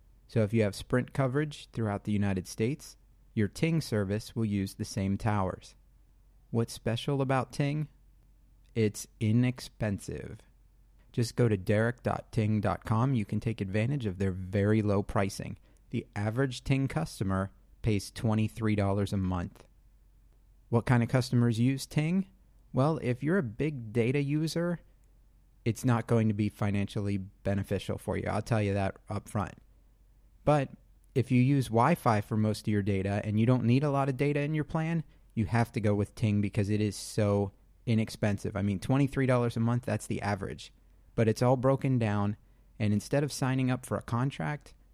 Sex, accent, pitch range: male, American, 105-130 Hz